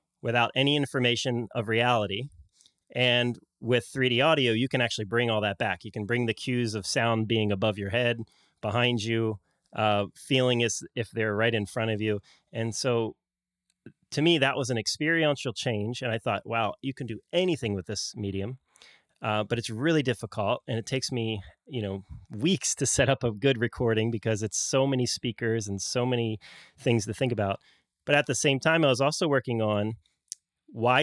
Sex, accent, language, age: male, American, English, 30-49